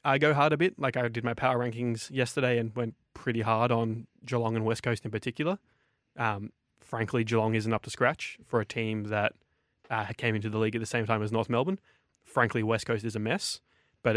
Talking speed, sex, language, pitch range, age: 225 wpm, male, English, 115-130 Hz, 20-39